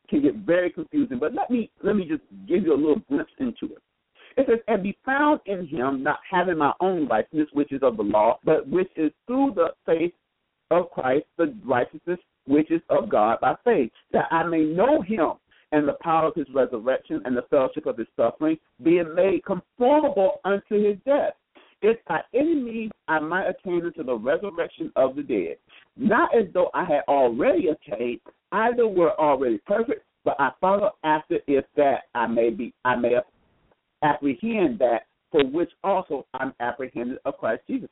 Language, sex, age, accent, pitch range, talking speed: English, male, 60-79, American, 160-265 Hz, 185 wpm